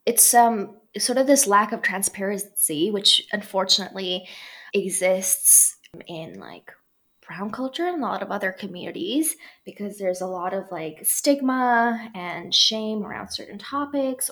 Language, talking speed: English, 140 wpm